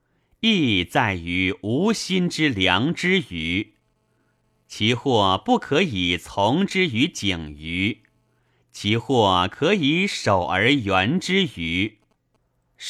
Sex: male